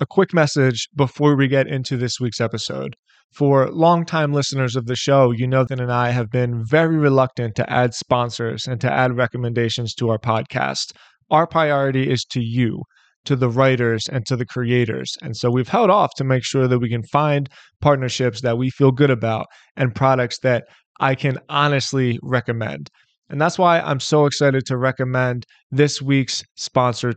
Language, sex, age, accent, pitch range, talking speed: English, male, 20-39, American, 125-150 Hz, 185 wpm